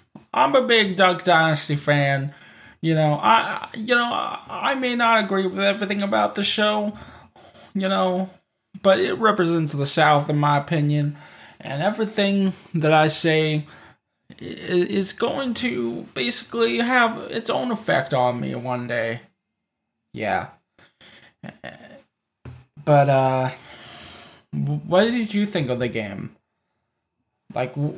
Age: 10-29